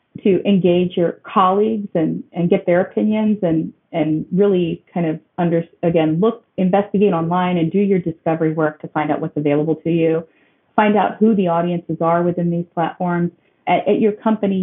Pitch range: 165-200 Hz